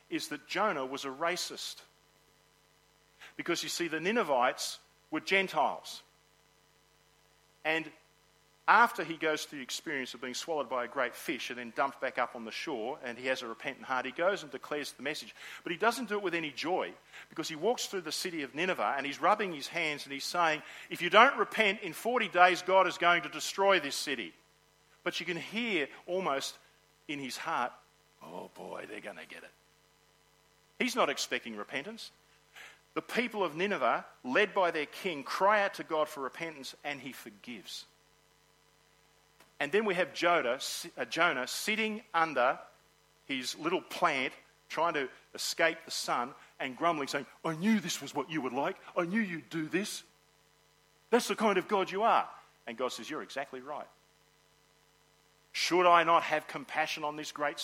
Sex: male